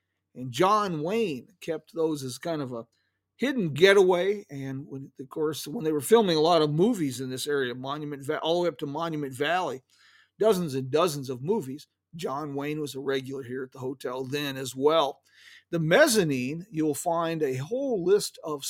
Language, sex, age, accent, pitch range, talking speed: English, male, 50-69, American, 145-215 Hz, 195 wpm